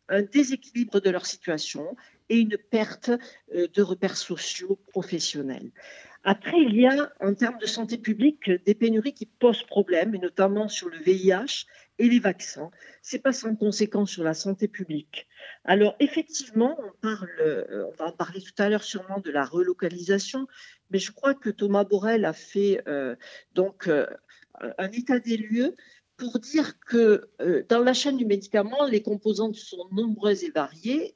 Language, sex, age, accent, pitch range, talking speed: French, female, 60-79, French, 190-255 Hz, 165 wpm